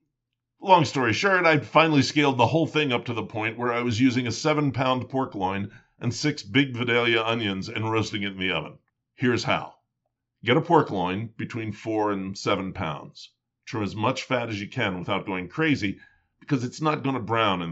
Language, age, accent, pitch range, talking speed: English, 50-69, American, 95-130 Hz, 205 wpm